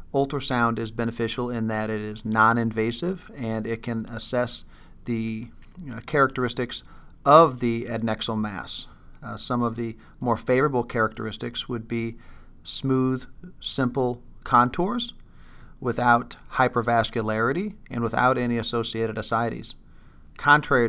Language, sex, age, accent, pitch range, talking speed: English, male, 40-59, American, 110-125 Hz, 110 wpm